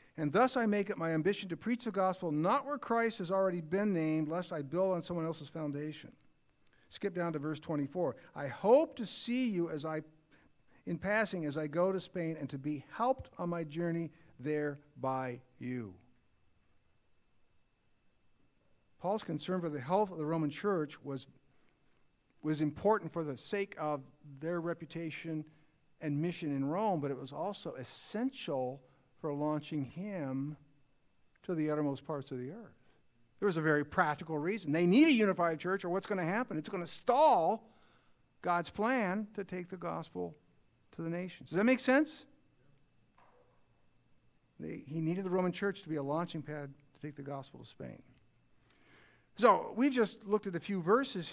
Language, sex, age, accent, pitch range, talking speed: English, male, 50-69, American, 145-190 Hz, 175 wpm